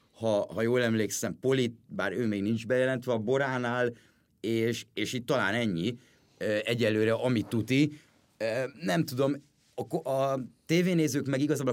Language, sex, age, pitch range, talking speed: Hungarian, male, 30-49, 100-120 Hz, 140 wpm